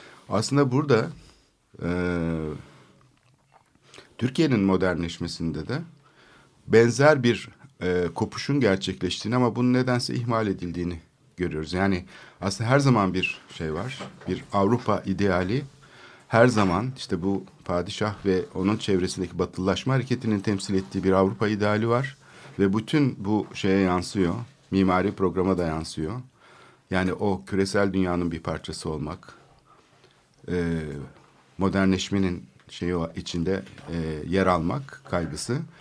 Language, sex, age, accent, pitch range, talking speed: Turkish, male, 60-79, native, 90-125 Hz, 110 wpm